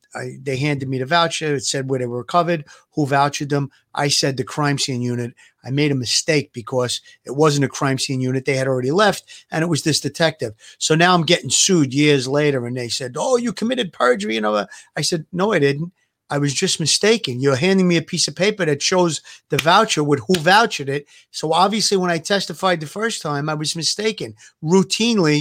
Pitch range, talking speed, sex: 145-185 Hz, 215 wpm, male